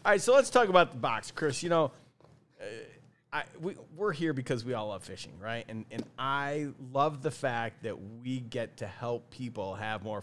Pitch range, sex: 120-155 Hz, male